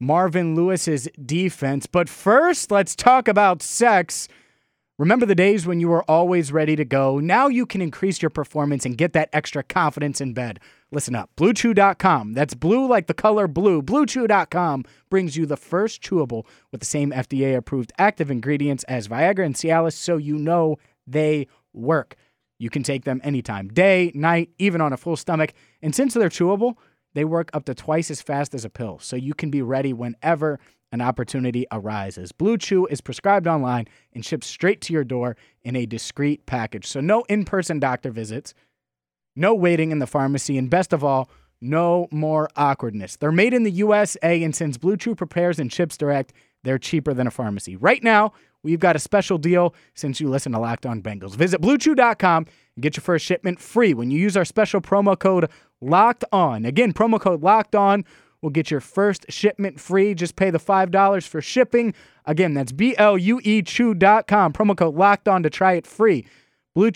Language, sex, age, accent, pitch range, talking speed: English, male, 30-49, American, 135-195 Hz, 185 wpm